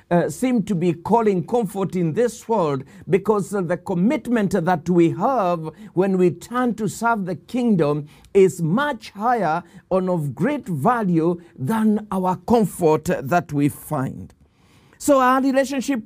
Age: 50-69